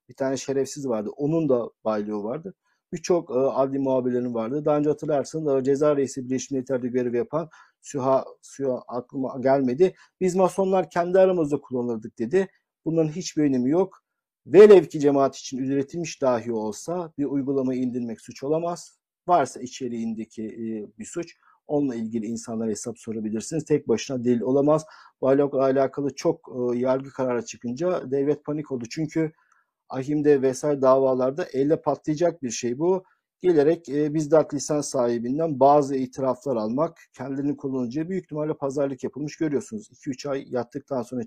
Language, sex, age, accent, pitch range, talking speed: Turkish, male, 50-69, native, 125-155 Hz, 150 wpm